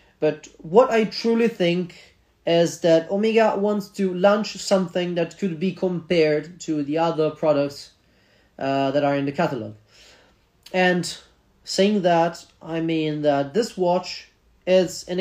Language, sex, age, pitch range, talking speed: Italian, male, 30-49, 155-200 Hz, 140 wpm